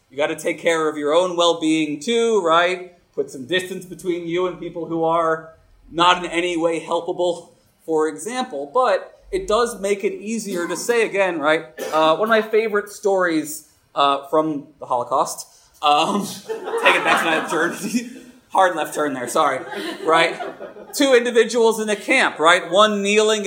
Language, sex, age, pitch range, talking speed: English, male, 30-49, 160-205 Hz, 175 wpm